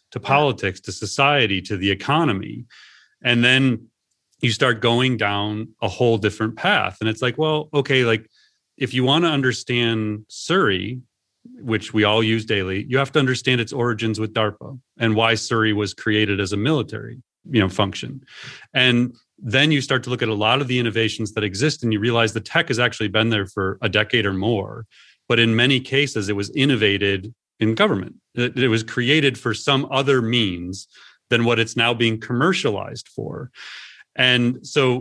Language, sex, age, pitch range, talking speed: English, male, 30-49, 105-125 Hz, 180 wpm